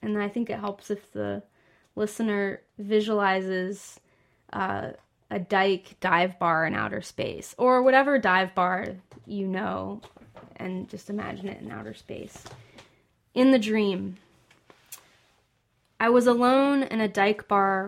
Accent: American